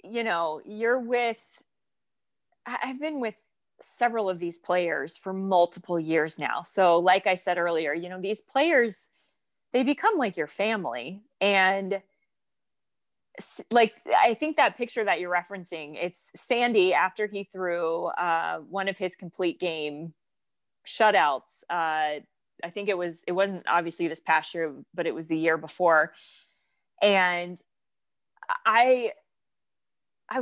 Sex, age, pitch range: female, 20-39, 170-215 Hz